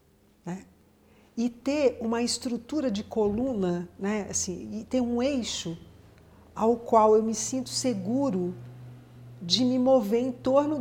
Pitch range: 190-250 Hz